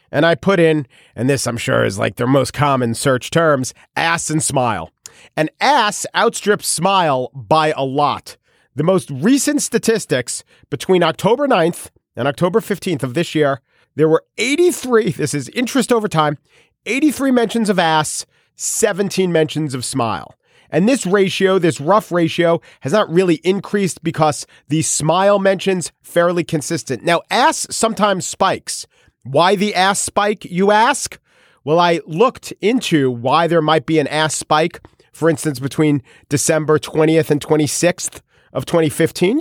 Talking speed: 150 wpm